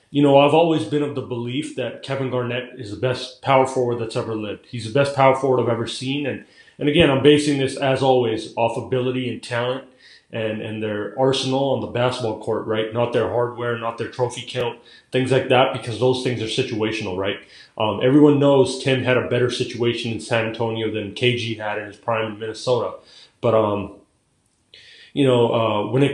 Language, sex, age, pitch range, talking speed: English, male, 30-49, 115-130 Hz, 205 wpm